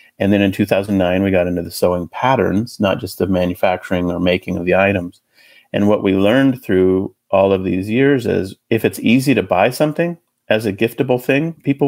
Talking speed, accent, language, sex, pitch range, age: 200 wpm, American, English, male, 90-105 Hz, 40-59